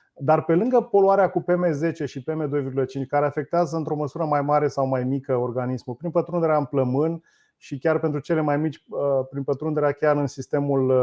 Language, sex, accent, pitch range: Romanian, male, native, 130-155 Hz